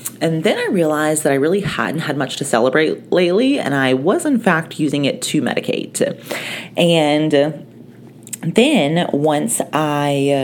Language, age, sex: English, 30-49, female